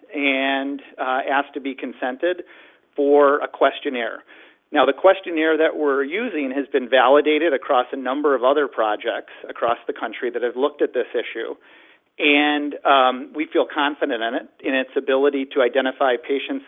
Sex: male